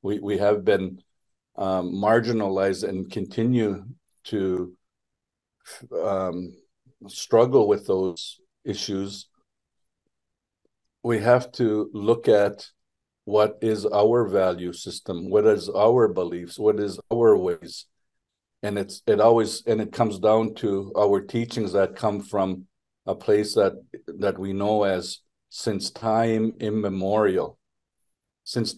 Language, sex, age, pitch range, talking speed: English, male, 50-69, 95-115 Hz, 120 wpm